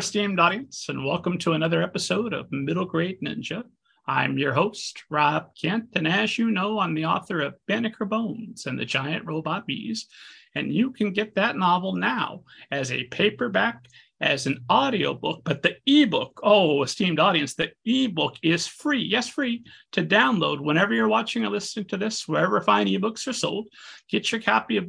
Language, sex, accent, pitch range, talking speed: English, male, American, 165-220 Hz, 180 wpm